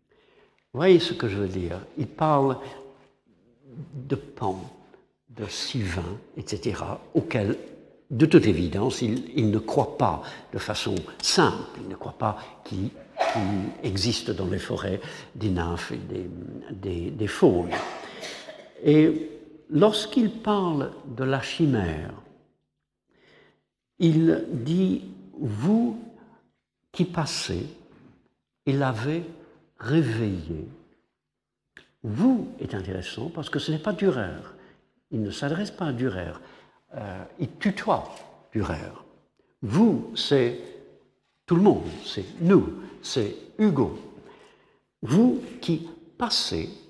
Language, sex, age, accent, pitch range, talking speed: French, male, 60-79, French, 110-165 Hz, 115 wpm